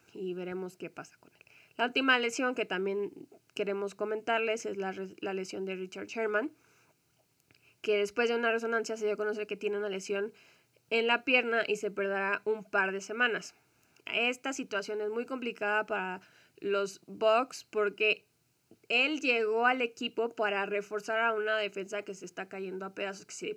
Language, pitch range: Spanish, 195-230 Hz